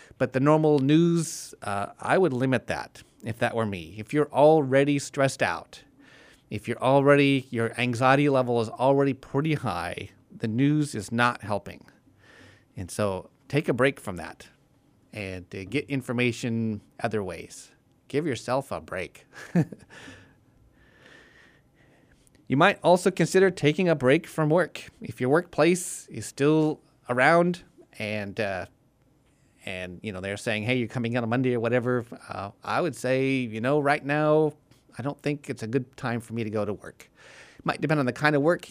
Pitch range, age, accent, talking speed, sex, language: 115-145 Hz, 30-49, American, 170 wpm, male, English